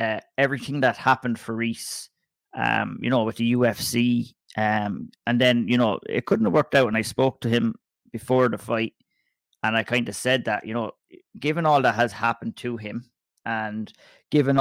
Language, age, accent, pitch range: English, 30-49, Irish, 115-135 Hz